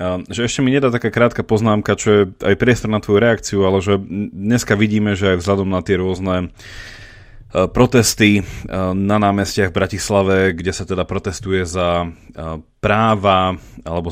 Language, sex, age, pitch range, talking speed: Slovak, male, 30-49, 95-115 Hz, 155 wpm